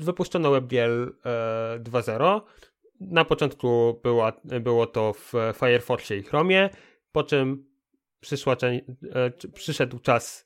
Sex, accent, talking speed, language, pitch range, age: male, native, 85 wpm, Polish, 125-160 Hz, 30-49